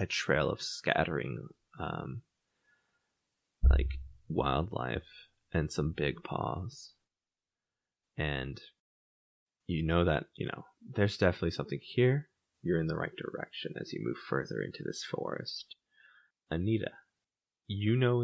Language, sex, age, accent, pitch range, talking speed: English, male, 20-39, American, 80-115 Hz, 120 wpm